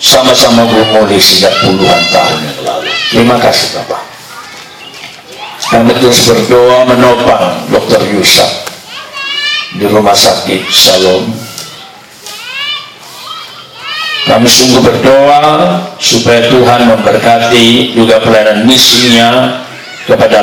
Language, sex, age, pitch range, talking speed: Indonesian, male, 50-69, 110-130 Hz, 90 wpm